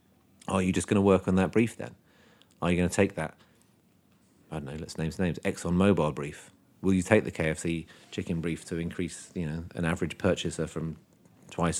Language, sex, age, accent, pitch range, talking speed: English, male, 30-49, British, 85-100 Hz, 210 wpm